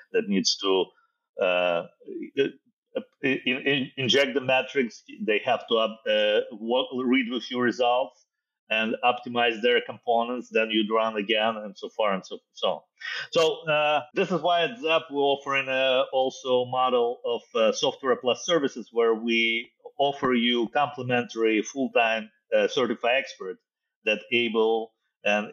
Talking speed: 150 wpm